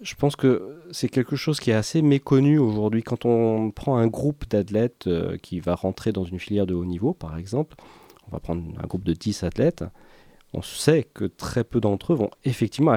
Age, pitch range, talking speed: 40-59, 90-120 Hz, 210 wpm